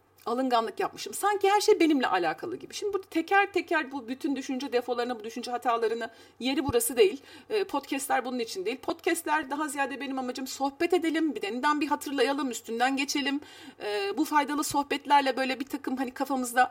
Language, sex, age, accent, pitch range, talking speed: Turkish, female, 40-59, native, 255-390 Hz, 170 wpm